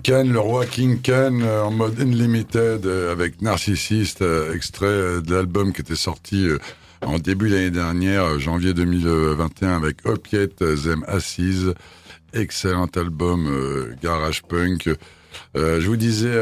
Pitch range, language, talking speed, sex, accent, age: 80-100 Hz, French, 155 wpm, male, French, 50-69